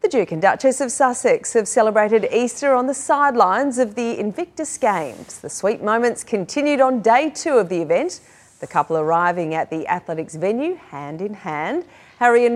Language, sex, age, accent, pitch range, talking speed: English, female, 40-59, Australian, 170-245 Hz, 180 wpm